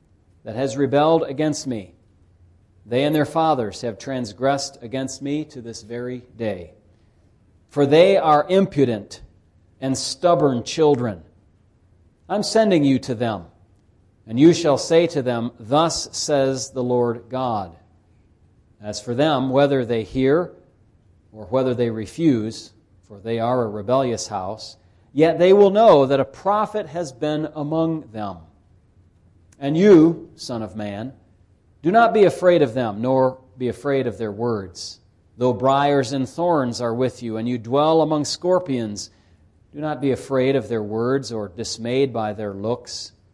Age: 40-59